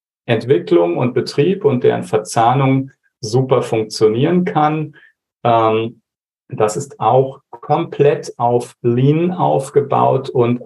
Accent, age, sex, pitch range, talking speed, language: German, 40-59, male, 110-150 Hz, 95 wpm, German